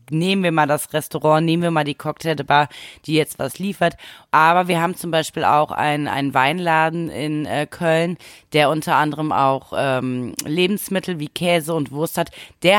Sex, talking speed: female, 180 wpm